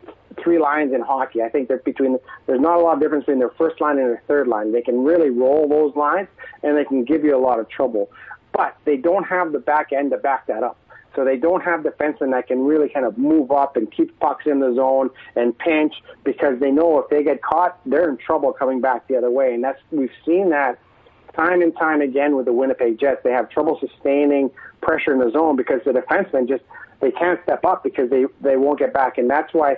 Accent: American